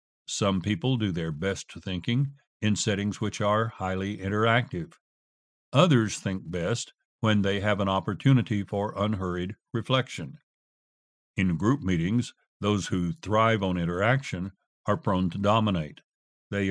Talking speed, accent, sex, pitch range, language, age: 130 wpm, American, male, 95-115 Hz, English, 60-79